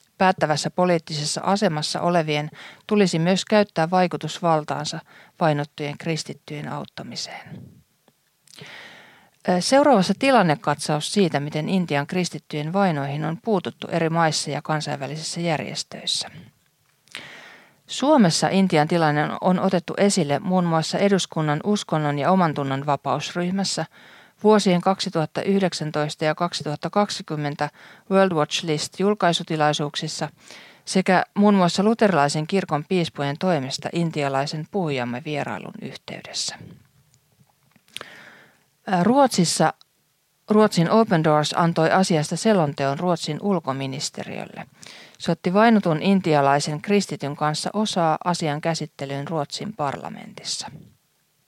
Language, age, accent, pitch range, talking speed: Finnish, 40-59, native, 150-190 Hz, 90 wpm